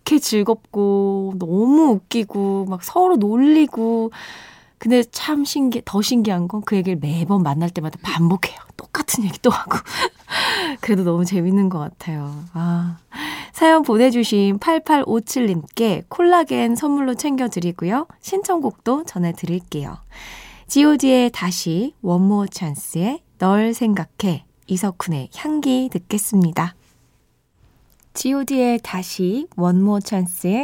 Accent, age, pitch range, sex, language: native, 20-39, 180-260 Hz, female, Korean